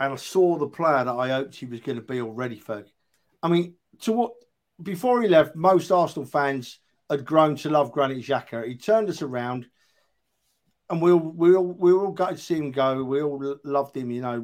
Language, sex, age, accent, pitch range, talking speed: English, male, 50-69, British, 140-185 Hz, 220 wpm